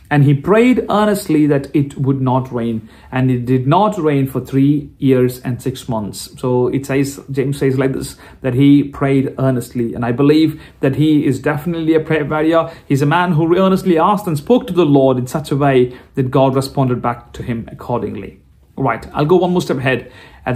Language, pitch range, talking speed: Malayalam, 130-170 Hz, 215 wpm